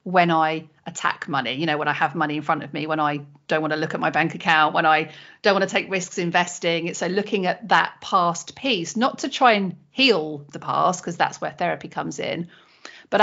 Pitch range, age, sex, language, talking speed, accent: 170-225 Hz, 40-59, female, English, 240 wpm, British